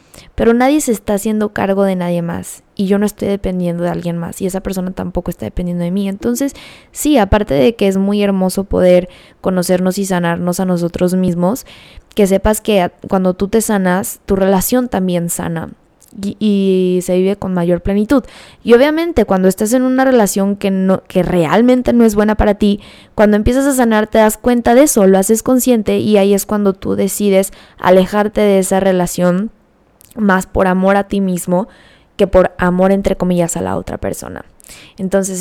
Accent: Mexican